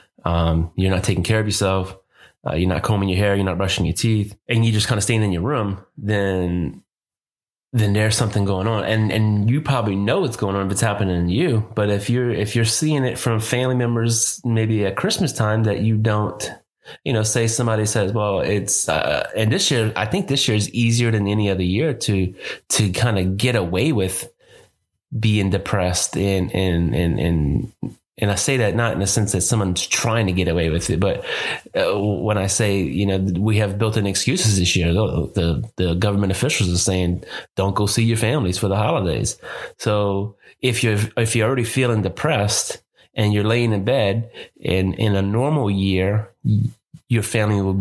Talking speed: 210 wpm